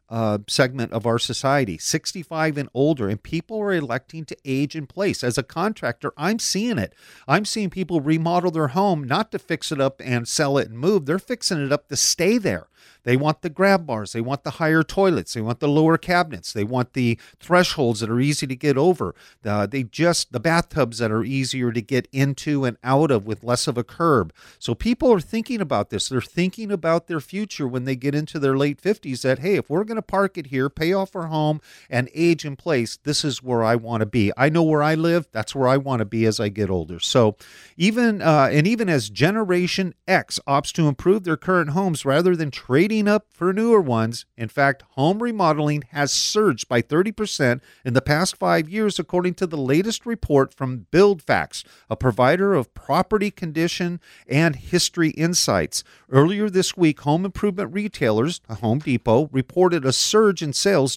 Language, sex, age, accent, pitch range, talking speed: English, male, 50-69, American, 130-180 Hz, 205 wpm